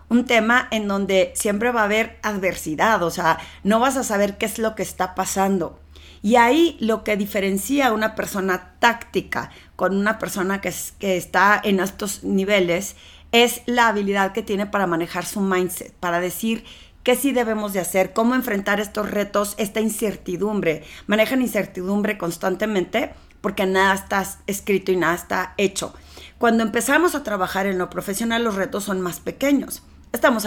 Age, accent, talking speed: 40-59, Mexican, 170 wpm